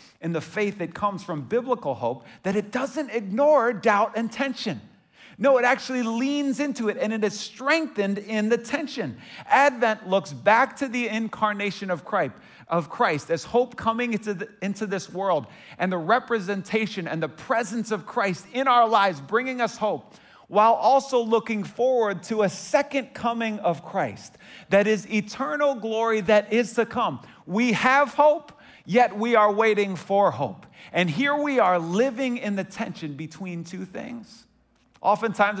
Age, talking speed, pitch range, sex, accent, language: 40-59, 165 wpm, 160-230 Hz, male, American, English